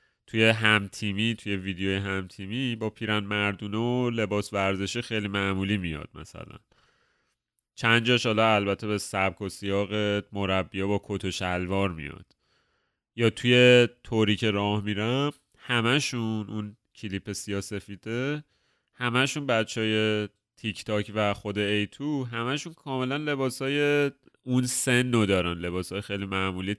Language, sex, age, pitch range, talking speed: Persian, male, 30-49, 95-115 Hz, 125 wpm